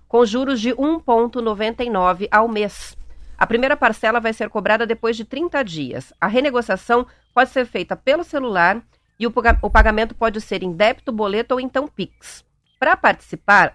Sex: female